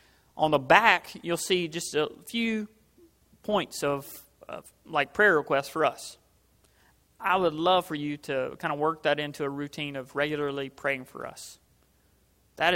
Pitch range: 140-170 Hz